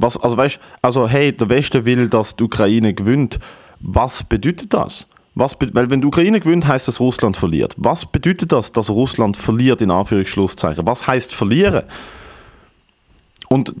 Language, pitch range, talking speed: German, 105-130 Hz, 165 wpm